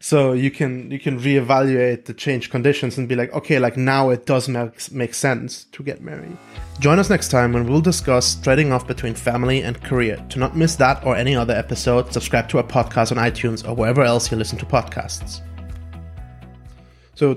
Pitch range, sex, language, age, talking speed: 115-130 Hz, male, English, 30-49, 200 wpm